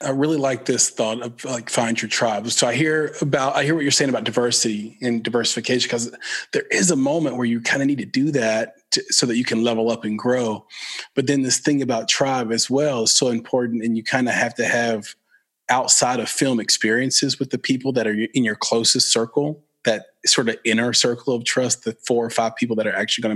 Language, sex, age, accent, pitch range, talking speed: English, male, 30-49, American, 110-130 Hz, 235 wpm